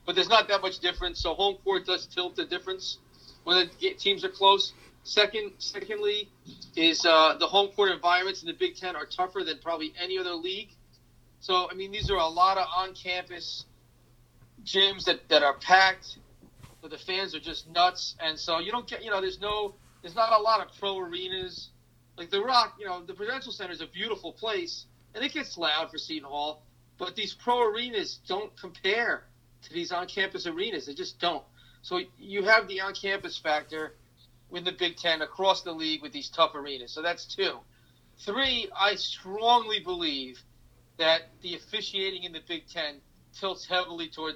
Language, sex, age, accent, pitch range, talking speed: English, male, 30-49, American, 155-205 Hz, 190 wpm